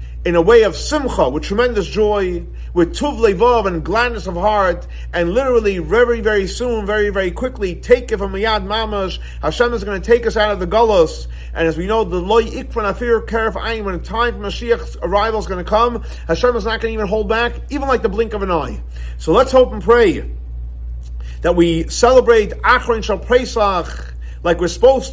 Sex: male